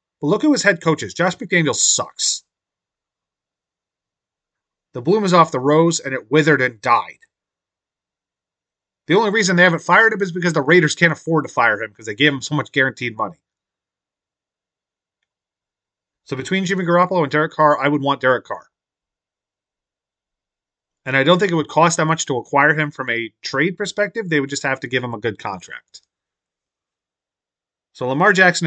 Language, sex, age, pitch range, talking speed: English, male, 30-49, 120-160 Hz, 180 wpm